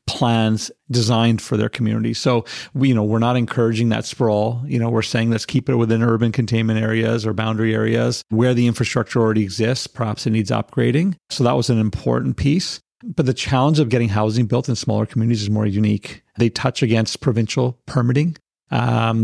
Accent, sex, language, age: American, male, English, 40-59